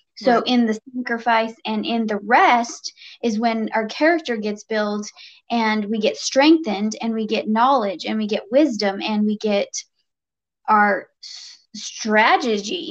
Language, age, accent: English, 20-39, American